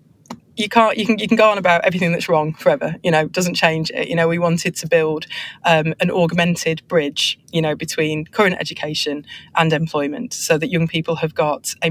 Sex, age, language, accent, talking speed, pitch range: female, 30-49, English, British, 210 wpm, 160-175 Hz